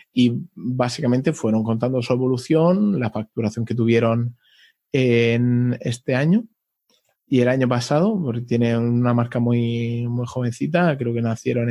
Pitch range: 120-150 Hz